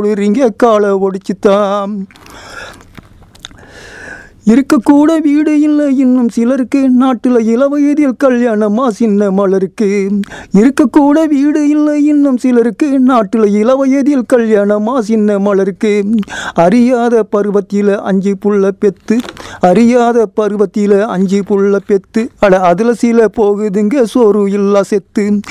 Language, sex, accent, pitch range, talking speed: Tamil, male, native, 200-235 Hz, 95 wpm